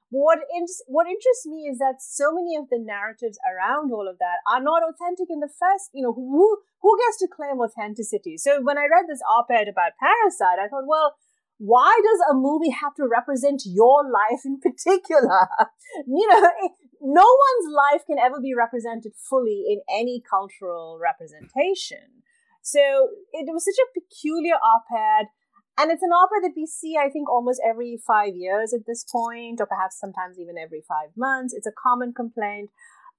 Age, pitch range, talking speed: 30-49, 225-330 Hz, 180 wpm